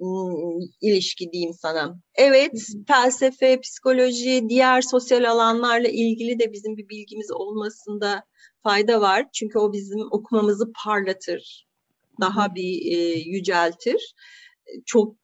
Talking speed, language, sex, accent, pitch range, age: 100 wpm, Turkish, female, native, 205-275 Hz, 40-59